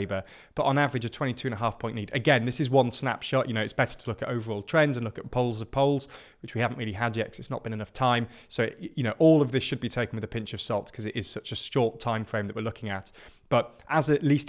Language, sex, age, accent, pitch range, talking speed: English, male, 20-39, British, 110-130 Hz, 295 wpm